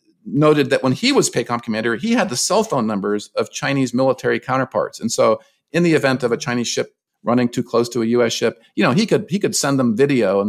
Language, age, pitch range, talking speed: English, 50-69, 120-155 Hz, 245 wpm